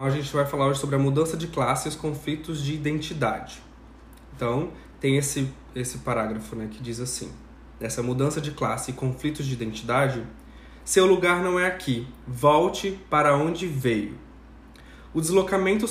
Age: 20-39